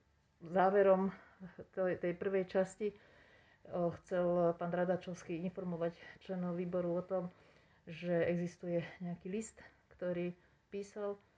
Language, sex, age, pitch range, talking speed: Slovak, female, 40-59, 175-195 Hz, 95 wpm